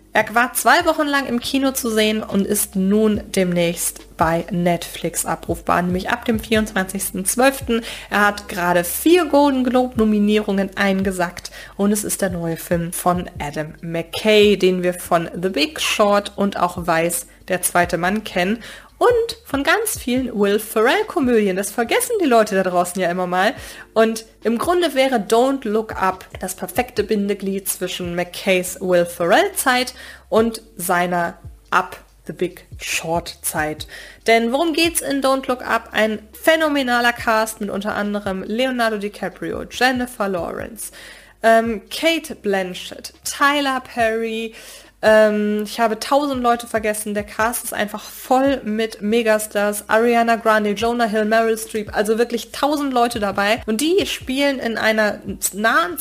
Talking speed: 145 wpm